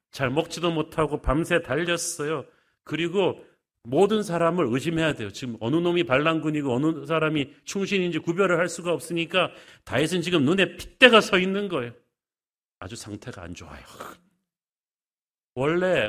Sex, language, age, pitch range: male, Korean, 40-59, 130-170 Hz